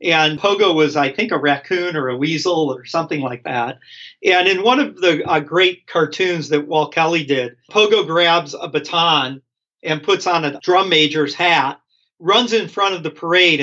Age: 40-59